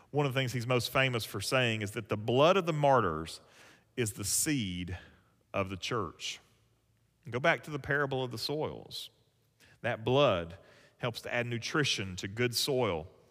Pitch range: 110-140 Hz